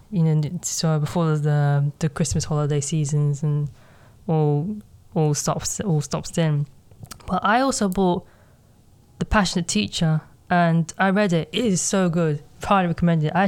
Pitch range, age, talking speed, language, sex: 150-180 Hz, 20-39, 155 wpm, English, female